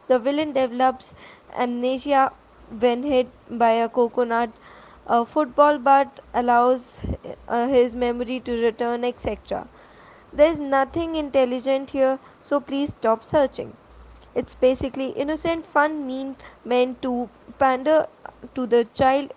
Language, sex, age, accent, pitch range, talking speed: English, female, 20-39, Indian, 240-275 Hz, 120 wpm